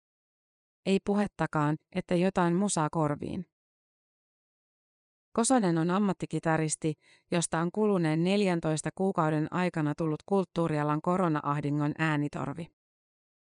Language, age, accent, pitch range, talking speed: Finnish, 30-49, native, 155-185 Hz, 85 wpm